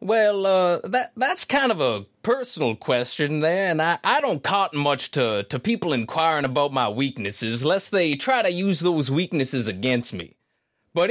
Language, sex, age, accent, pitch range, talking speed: English, male, 30-49, American, 130-215 Hz, 180 wpm